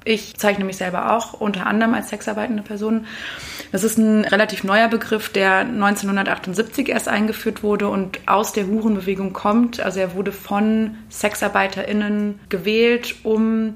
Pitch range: 195-225 Hz